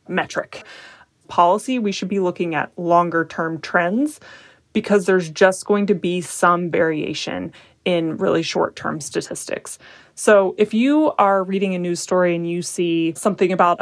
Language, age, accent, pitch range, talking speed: English, 20-39, American, 175-205 Hz, 155 wpm